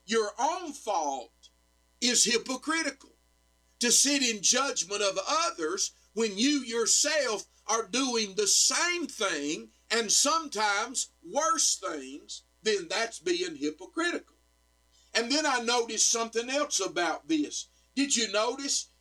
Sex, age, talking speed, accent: male, 50-69, 120 wpm, American